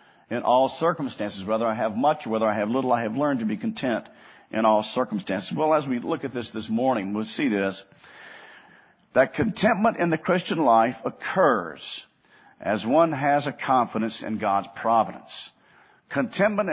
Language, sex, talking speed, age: English, male, 170 wpm, 50-69